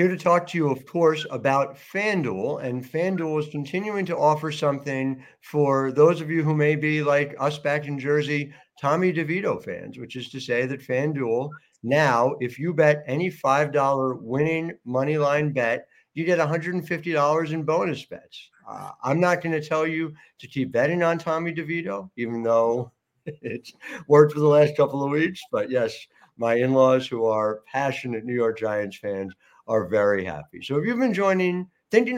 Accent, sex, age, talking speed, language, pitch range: American, male, 50-69, 180 wpm, English, 125-165 Hz